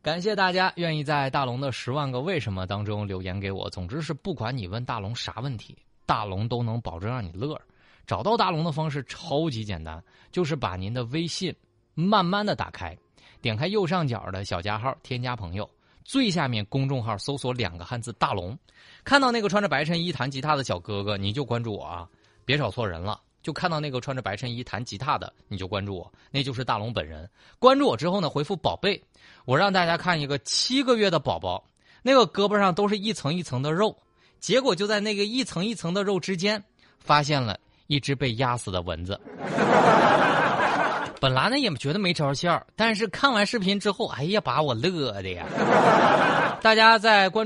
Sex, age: male, 20-39